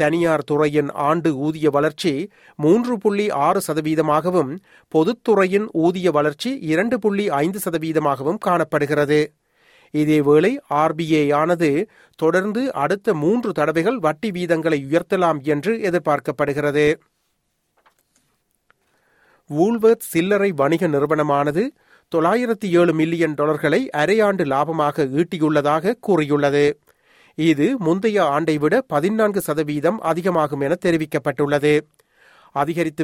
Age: 40-59